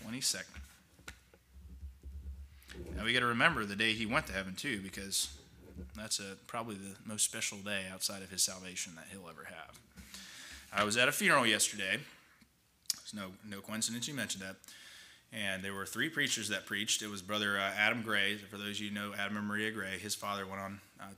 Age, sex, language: 20-39, male, English